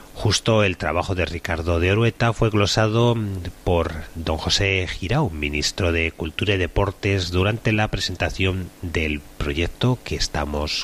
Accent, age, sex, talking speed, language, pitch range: Spanish, 30-49, male, 140 wpm, Spanish, 85-110 Hz